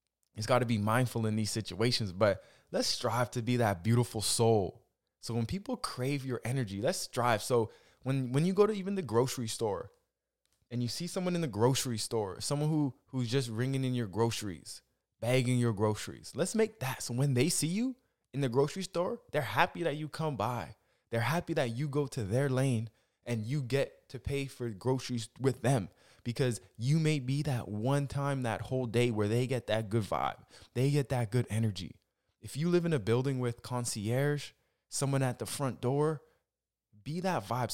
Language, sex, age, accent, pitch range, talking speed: English, male, 20-39, American, 115-145 Hz, 200 wpm